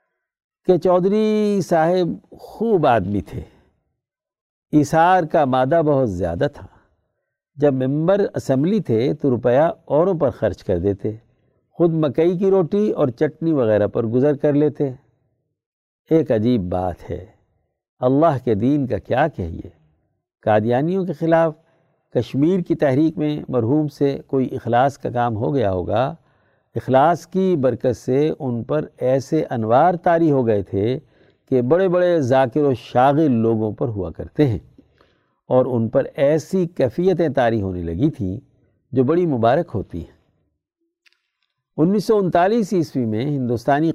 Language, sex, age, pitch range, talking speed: Urdu, male, 60-79, 120-165 Hz, 140 wpm